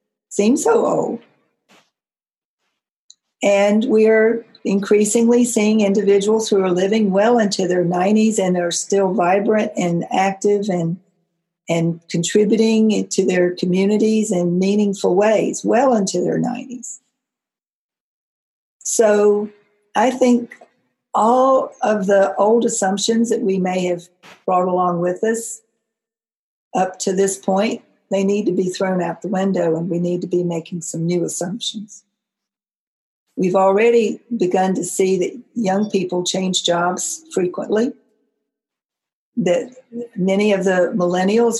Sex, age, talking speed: female, 50-69, 125 wpm